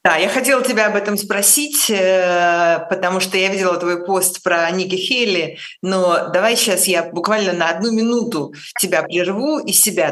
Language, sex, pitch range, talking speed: Russian, female, 165-205 Hz, 165 wpm